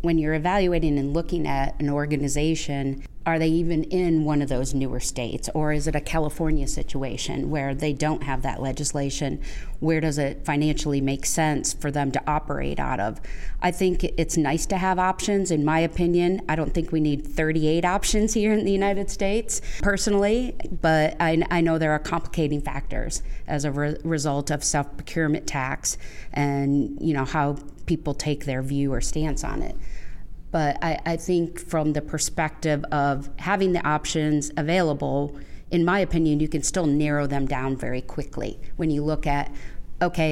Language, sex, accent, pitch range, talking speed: English, female, American, 140-165 Hz, 175 wpm